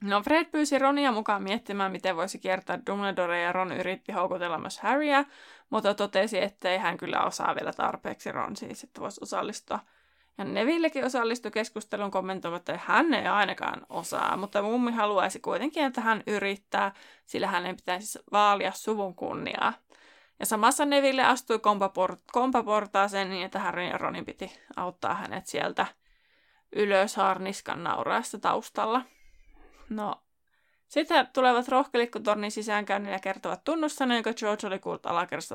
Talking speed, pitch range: 140 wpm, 195-245 Hz